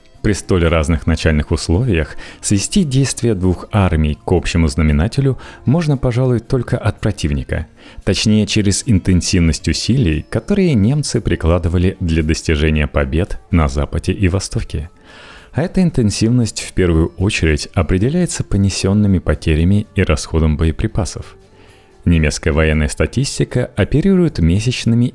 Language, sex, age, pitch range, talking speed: Russian, male, 30-49, 80-110 Hz, 115 wpm